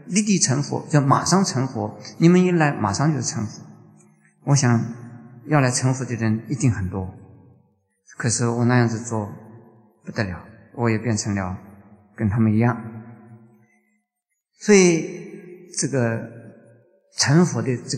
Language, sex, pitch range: Chinese, male, 110-155 Hz